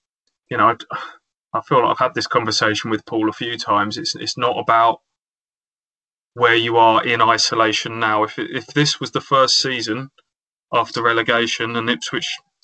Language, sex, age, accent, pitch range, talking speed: English, male, 20-39, British, 110-135 Hz, 170 wpm